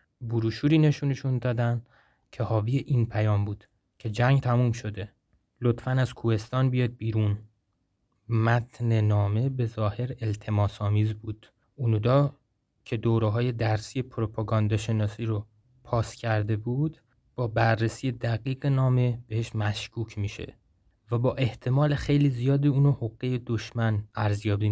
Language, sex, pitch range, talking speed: Persian, male, 105-125 Hz, 125 wpm